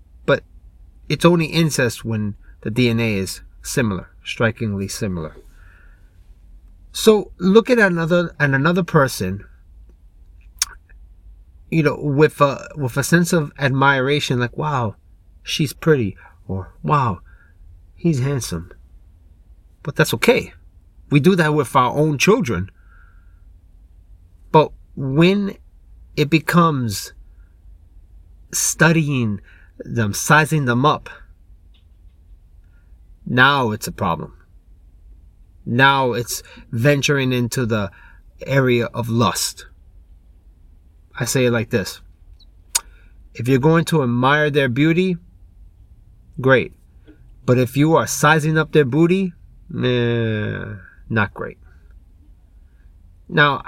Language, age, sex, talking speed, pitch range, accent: English, 30-49, male, 100 wpm, 85-140 Hz, American